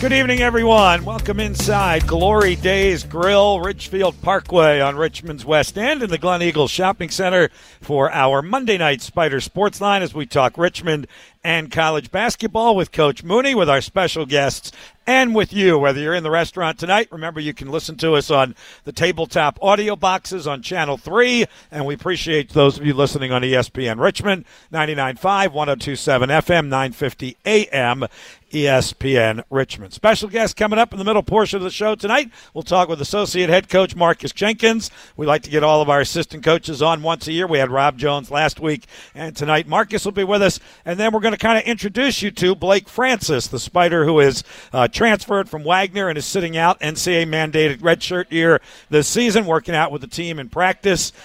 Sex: male